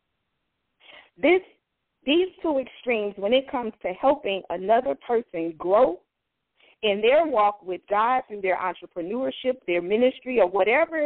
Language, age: English, 40-59